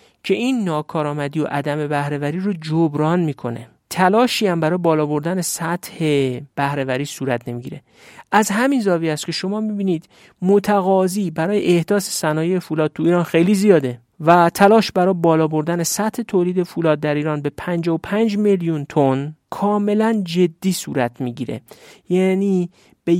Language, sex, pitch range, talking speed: Persian, male, 145-190 Hz, 140 wpm